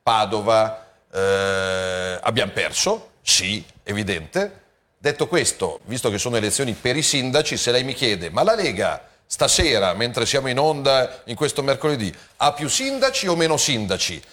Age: 40-59